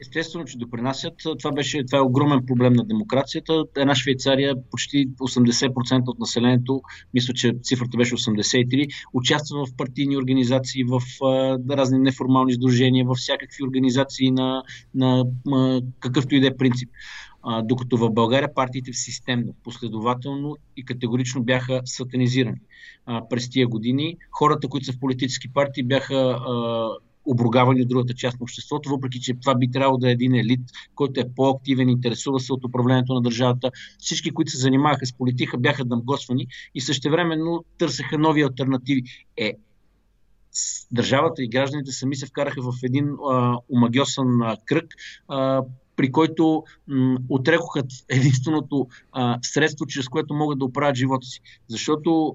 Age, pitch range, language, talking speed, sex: 50-69, 125-140 Hz, English, 150 wpm, male